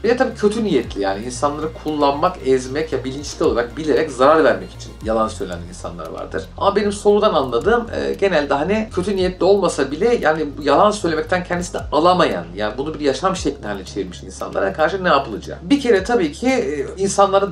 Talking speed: 175 wpm